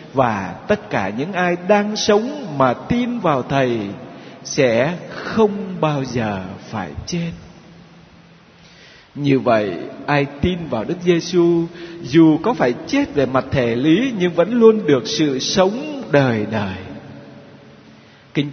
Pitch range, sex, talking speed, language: 130-195 Hz, male, 135 wpm, Vietnamese